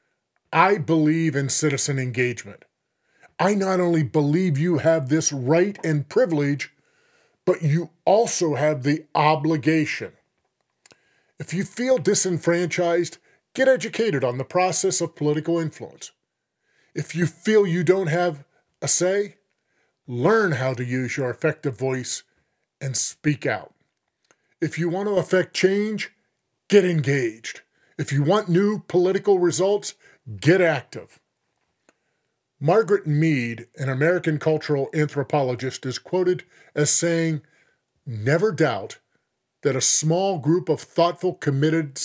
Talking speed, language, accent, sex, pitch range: 125 wpm, English, American, male, 145-180 Hz